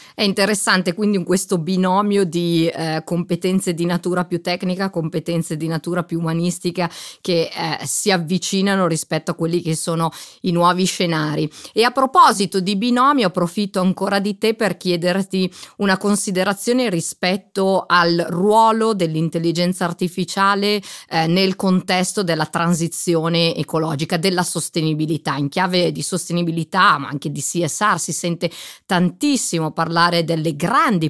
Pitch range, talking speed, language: 165-190 Hz, 135 wpm, Italian